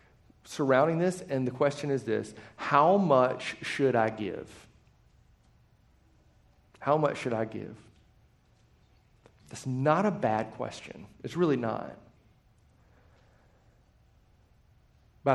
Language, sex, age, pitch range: English, male, 50-69, 135-180 Hz